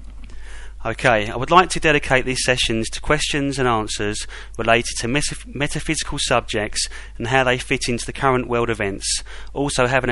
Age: 30-49